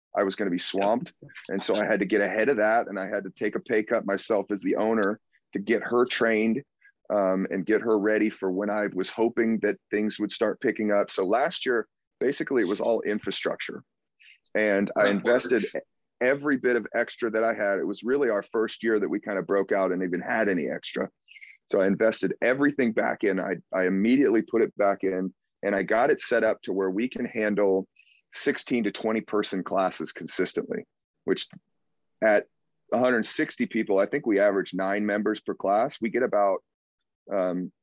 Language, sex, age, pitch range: English, male, 30-49, 95-110 Hz